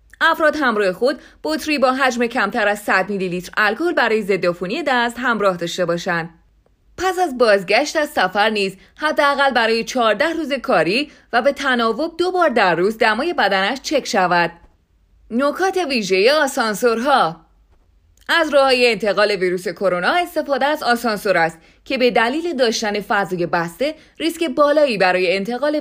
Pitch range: 195-285 Hz